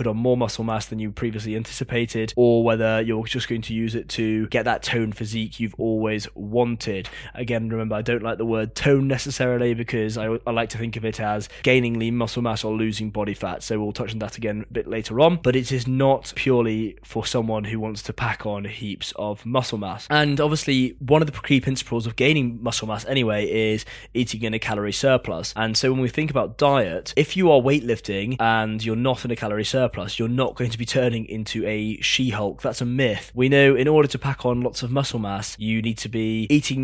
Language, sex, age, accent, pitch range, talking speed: English, male, 20-39, British, 110-125 Hz, 230 wpm